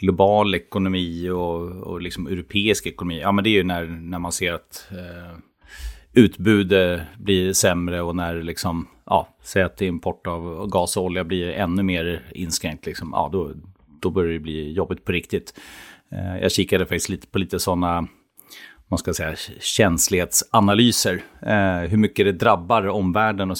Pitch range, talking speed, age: 85-100 Hz, 160 wpm, 30-49